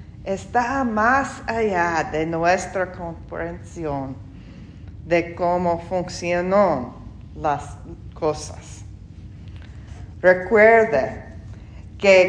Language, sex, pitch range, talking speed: English, female, 140-200 Hz, 65 wpm